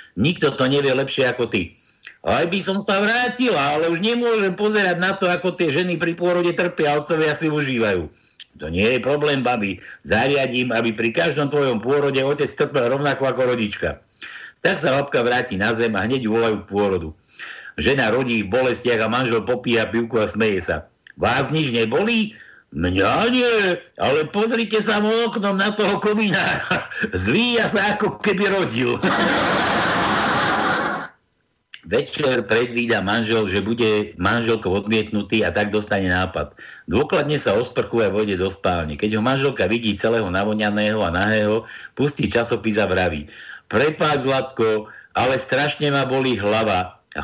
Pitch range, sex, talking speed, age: 110-175 Hz, male, 150 wpm, 60-79